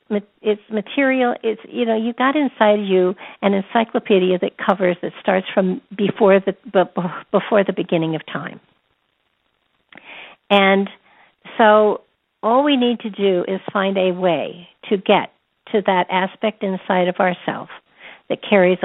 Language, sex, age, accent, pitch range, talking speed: English, female, 60-79, American, 180-215 Hz, 140 wpm